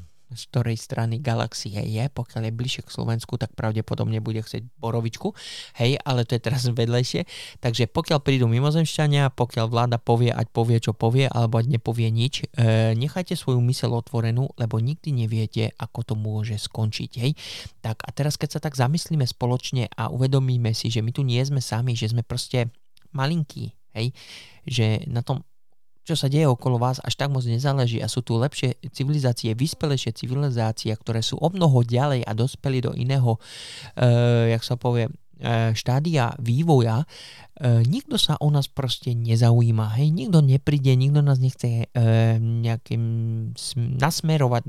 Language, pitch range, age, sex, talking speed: Slovak, 115-135 Hz, 20-39, male, 165 wpm